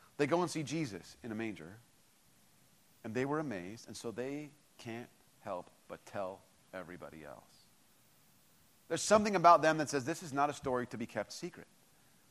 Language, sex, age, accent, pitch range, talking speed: English, male, 30-49, American, 115-165 Hz, 175 wpm